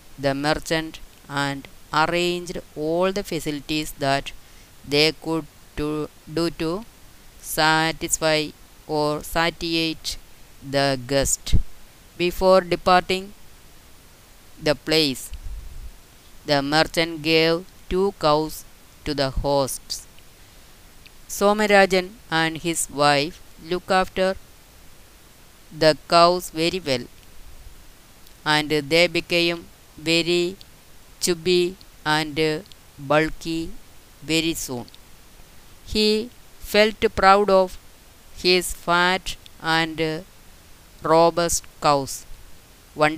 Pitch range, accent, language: 140-175 Hz, native, Malayalam